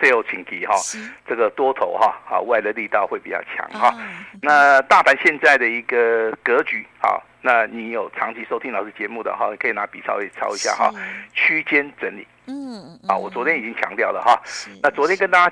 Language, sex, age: Chinese, male, 50-69